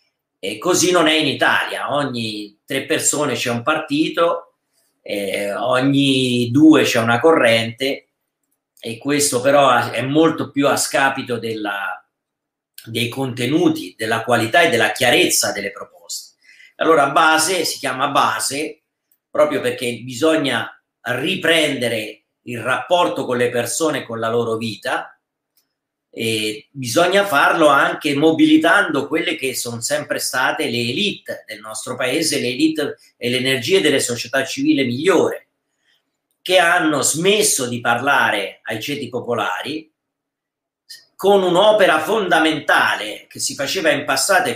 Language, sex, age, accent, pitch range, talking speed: Italian, male, 40-59, native, 120-165 Hz, 130 wpm